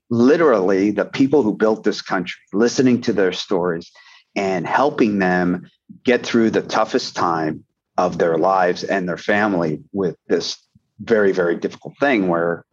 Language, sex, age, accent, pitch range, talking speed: English, male, 40-59, American, 100-125 Hz, 150 wpm